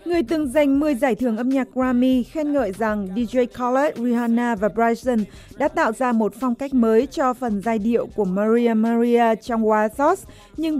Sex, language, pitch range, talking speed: female, Vietnamese, 225-265 Hz, 190 wpm